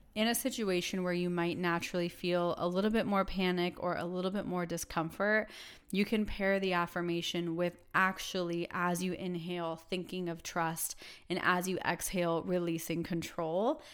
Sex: female